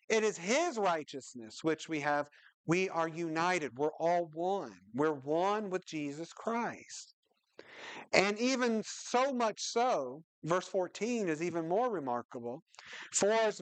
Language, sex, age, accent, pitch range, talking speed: English, male, 50-69, American, 150-200 Hz, 135 wpm